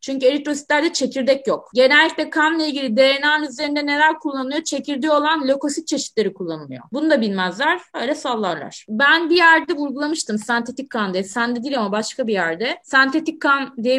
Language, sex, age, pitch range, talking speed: Turkish, female, 30-49, 235-300 Hz, 165 wpm